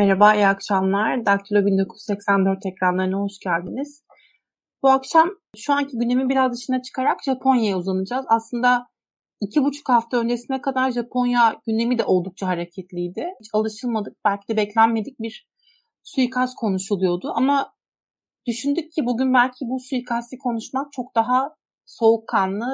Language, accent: Turkish, native